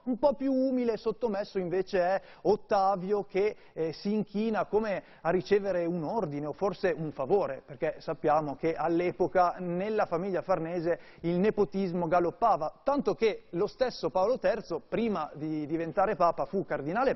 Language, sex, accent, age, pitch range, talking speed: Italian, male, native, 30-49, 170-225 Hz, 155 wpm